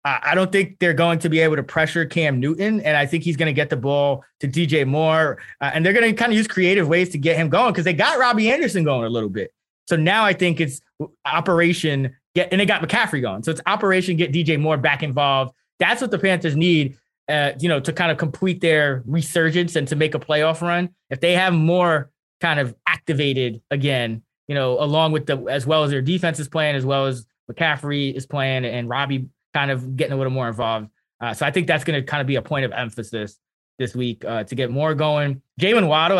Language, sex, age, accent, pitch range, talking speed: English, male, 20-39, American, 135-170 Hz, 240 wpm